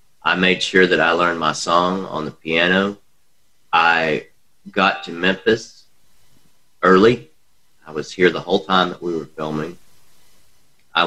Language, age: English, 40-59